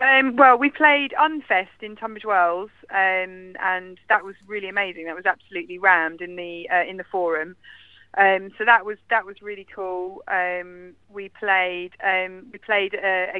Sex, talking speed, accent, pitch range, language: female, 175 wpm, British, 180-230 Hz, English